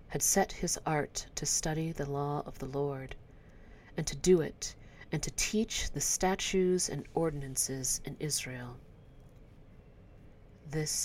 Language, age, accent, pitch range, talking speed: English, 40-59, American, 135-170 Hz, 135 wpm